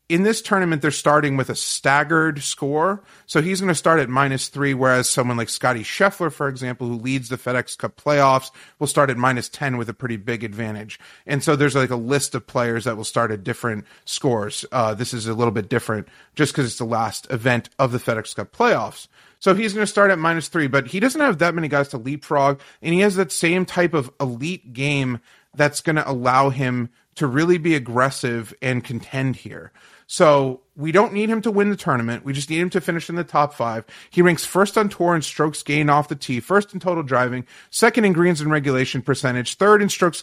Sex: male